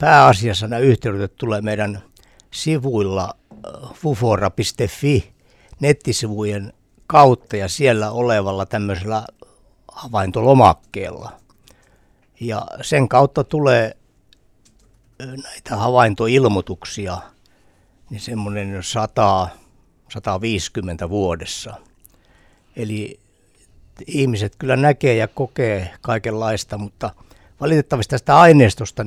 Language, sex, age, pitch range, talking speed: Finnish, male, 60-79, 100-130 Hz, 75 wpm